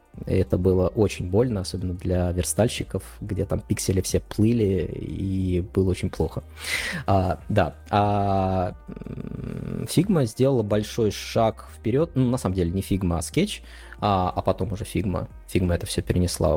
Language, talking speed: Russian, 145 wpm